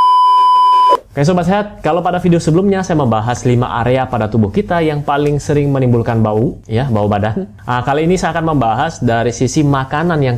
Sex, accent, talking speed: male, native, 190 wpm